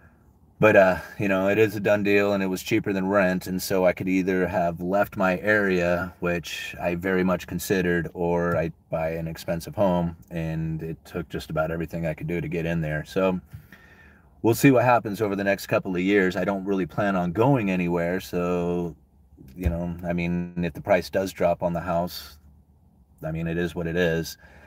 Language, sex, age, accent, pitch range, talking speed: English, male, 30-49, American, 85-100 Hz, 210 wpm